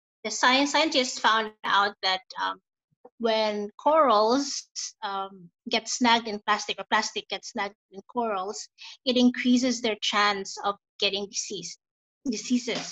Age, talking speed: 20-39, 130 wpm